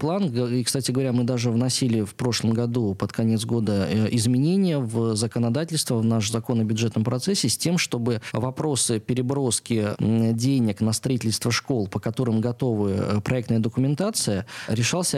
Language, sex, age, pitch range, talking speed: Russian, male, 20-39, 110-135 Hz, 140 wpm